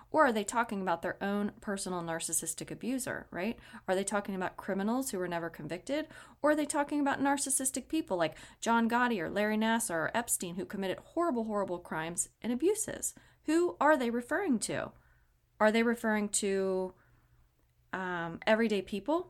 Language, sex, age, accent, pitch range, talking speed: English, female, 30-49, American, 180-235 Hz, 170 wpm